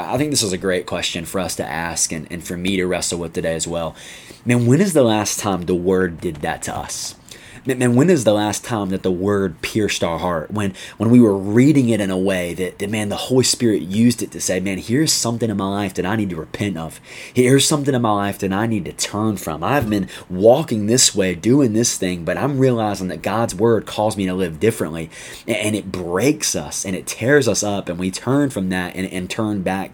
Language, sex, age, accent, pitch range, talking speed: English, male, 20-39, American, 90-115 Hz, 250 wpm